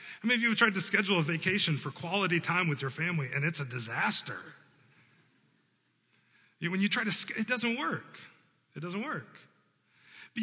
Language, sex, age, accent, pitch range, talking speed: English, male, 30-49, American, 150-210 Hz, 185 wpm